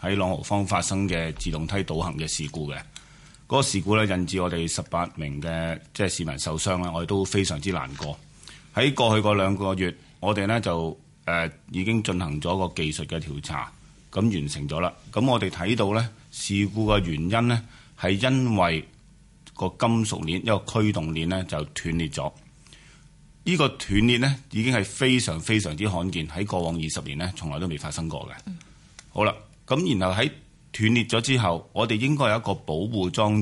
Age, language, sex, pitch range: 30-49, Chinese, male, 85-115 Hz